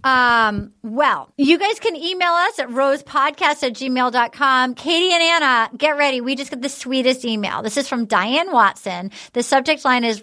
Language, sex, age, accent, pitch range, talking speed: English, female, 30-49, American, 250-330 Hz, 180 wpm